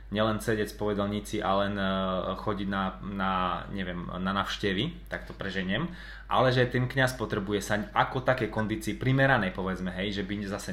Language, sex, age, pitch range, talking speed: Slovak, male, 20-39, 95-110 Hz, 170 wpm